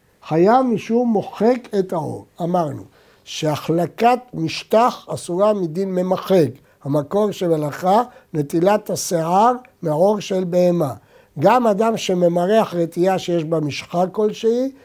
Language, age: Hebrew, 60-79